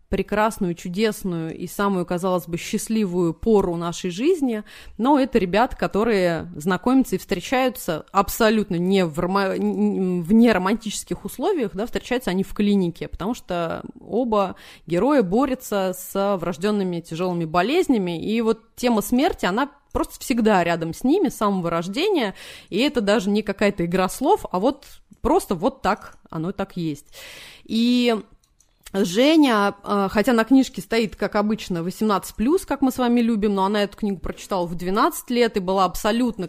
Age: 30-49